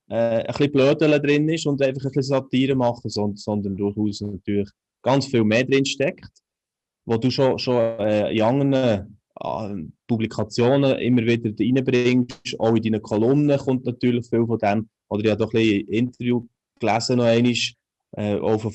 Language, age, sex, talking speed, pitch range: German, 20-39, male, 165 wpm, 110-135 Hz